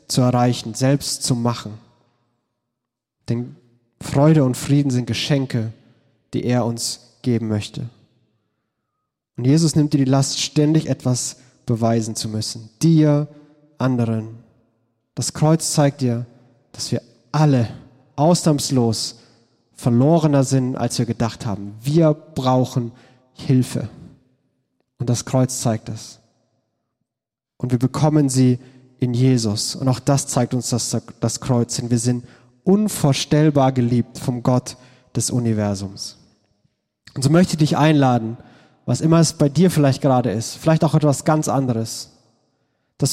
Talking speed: 130 wpm